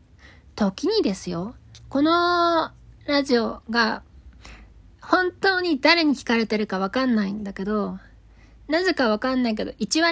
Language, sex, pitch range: Japanese, female, 195-305 Hz